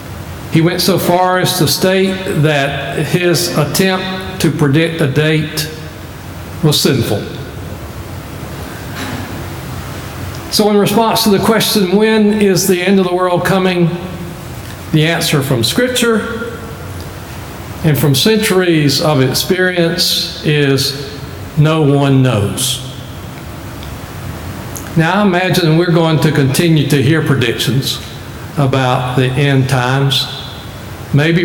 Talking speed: 110 wpm